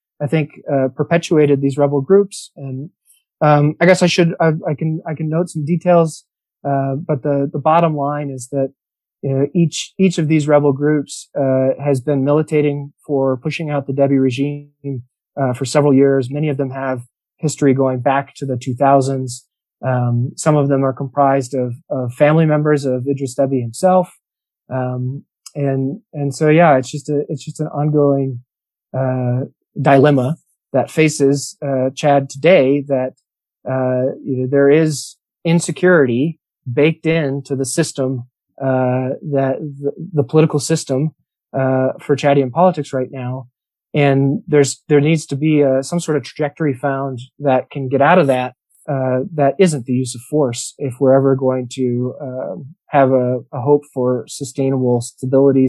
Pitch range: 130-150 Hz